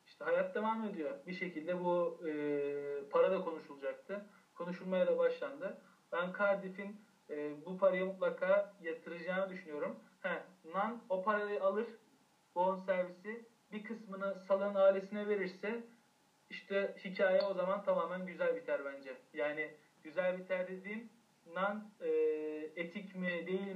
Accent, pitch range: native, 165-205 Hz